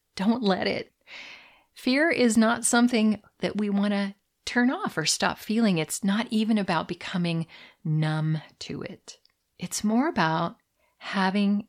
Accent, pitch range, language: American, 165-210 Hz, English